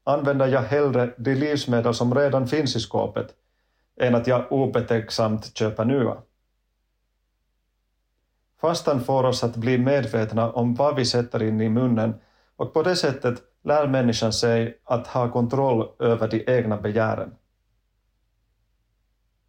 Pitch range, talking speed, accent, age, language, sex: 110-125 Hz, 130 wpm, Finnish, 30-49, Swedish, male